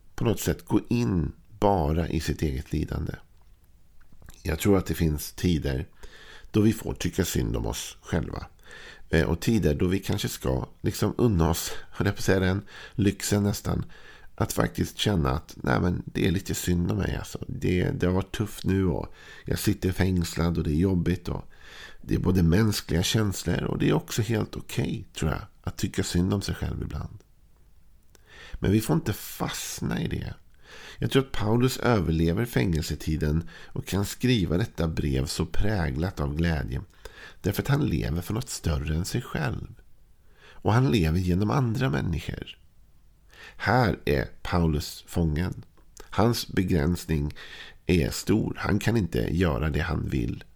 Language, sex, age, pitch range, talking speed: Swedish, male, 50-69, 80-100 Hz, 165 wpm